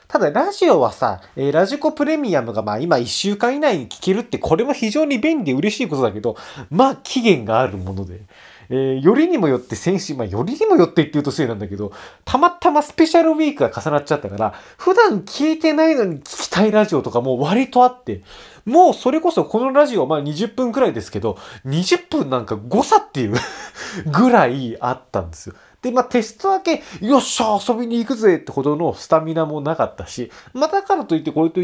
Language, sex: Japanese, male